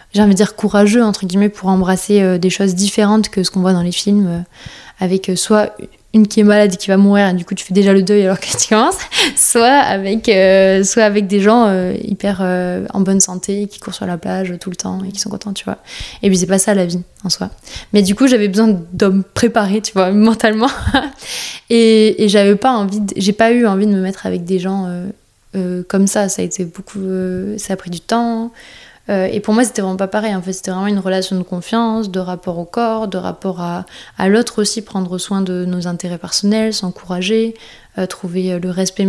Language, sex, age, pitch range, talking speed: French, female, 20-39, 185-210 Hz, 240 wpm